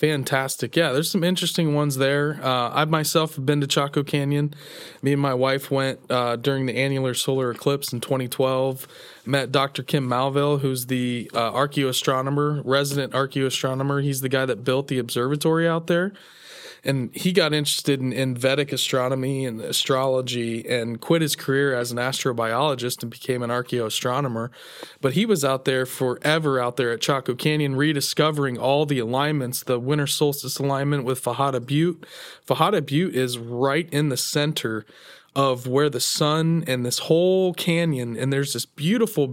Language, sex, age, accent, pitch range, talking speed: English, male, 20-39, American, 125-150 Hz, 165 wpm